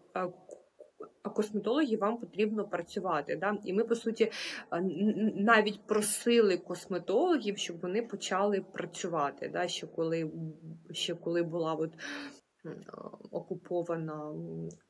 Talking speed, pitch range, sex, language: 95 wpm, 170-205 Hz, female, Ukrainian